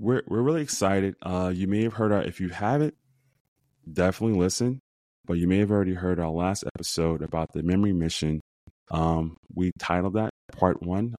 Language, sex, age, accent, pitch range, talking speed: English, male, 20-39, American, 80-95 Hz, 180 wpm